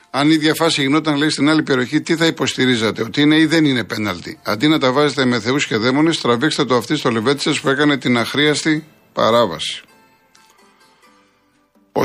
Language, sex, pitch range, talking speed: Greek, male, 125-150 Hz, 180 wpm